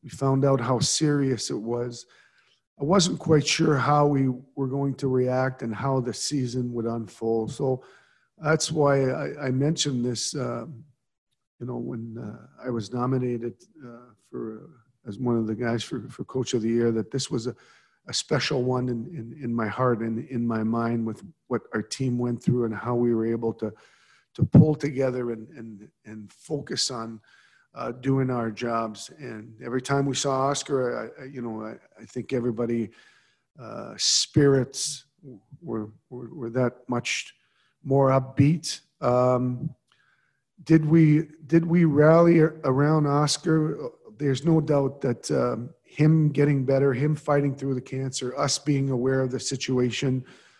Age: 50-69